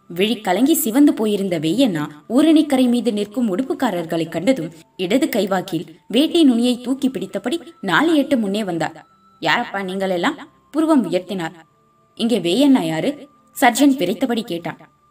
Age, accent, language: 20-39, native, Tamil